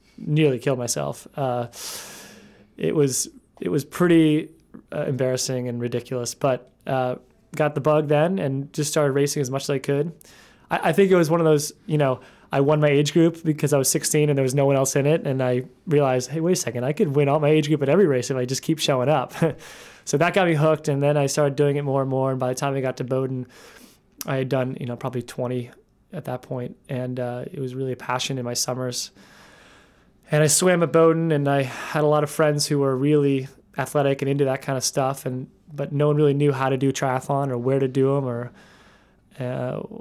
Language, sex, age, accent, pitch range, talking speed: English, male, 20-39, American, 130-150 Hz, 240 wpm